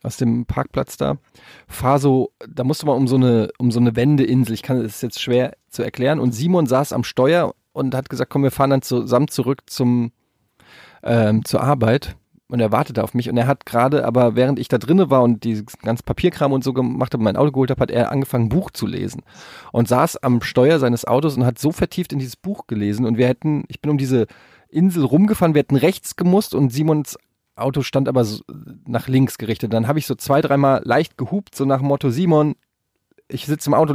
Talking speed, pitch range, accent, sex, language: 225 wpm, 120-145 Hz, German, male, German